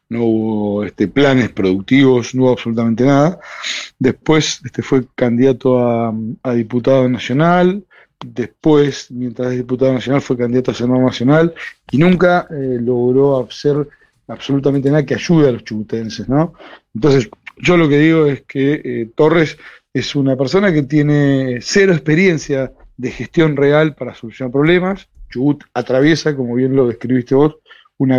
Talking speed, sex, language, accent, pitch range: 145 wpm, male, Spanish, Argentinian, 125-155 Hz